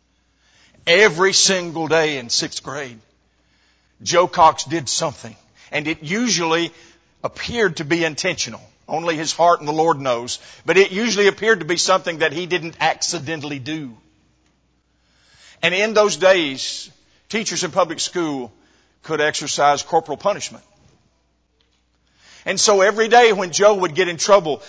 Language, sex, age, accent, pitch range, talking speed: English, male, 50-69, American, 130-195 Hz, 140 wpm